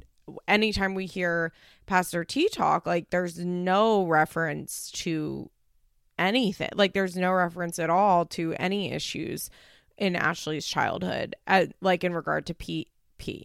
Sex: female